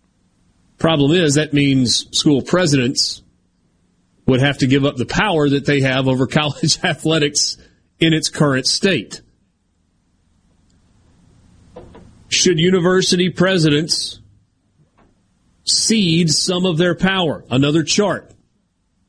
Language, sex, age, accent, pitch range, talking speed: English, male, 40-59, American, 125-170 Hz, 105 wpm